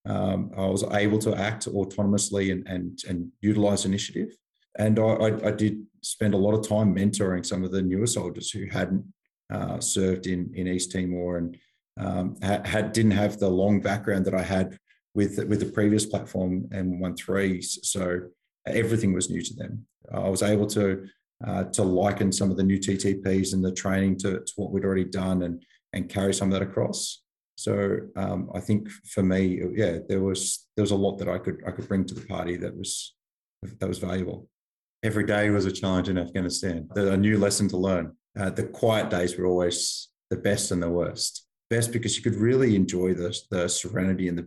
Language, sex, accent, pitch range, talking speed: English, male, Australian, 90-105 Hz, 205 wpm